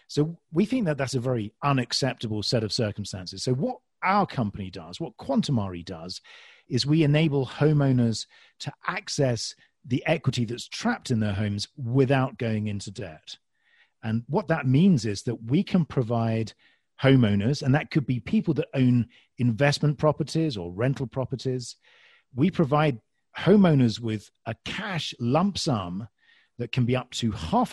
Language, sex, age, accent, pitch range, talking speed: English, male, 40-59, British, 110-145 Hz, 155 wpm